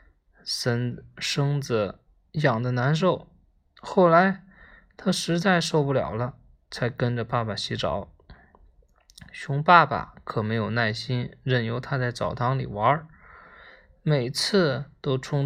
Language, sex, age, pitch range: Chinese, male, 20-39, 120-170 Hz